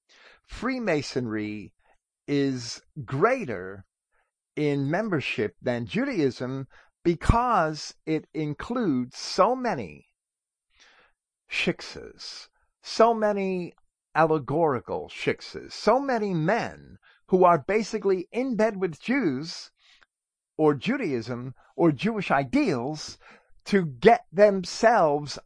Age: 50-69